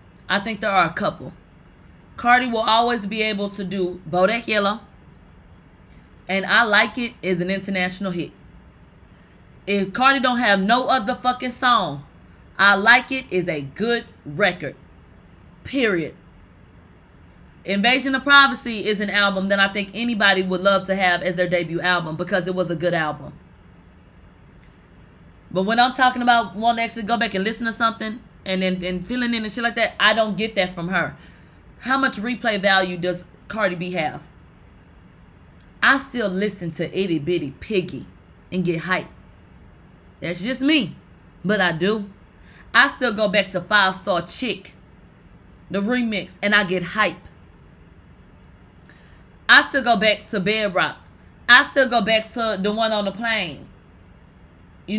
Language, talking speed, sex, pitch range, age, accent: English, 160 wpm, female, 180-230 Hz, 20-39, American